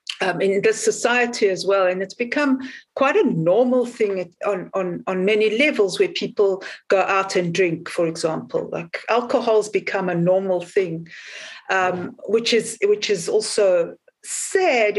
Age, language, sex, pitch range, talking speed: 50-69, English, female, 190-265 Hz, 155 wpm